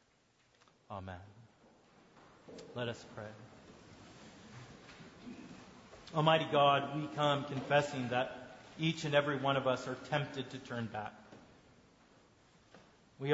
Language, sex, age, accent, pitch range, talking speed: English, male, 30-49, American, 125-155 Hz, 100 wpm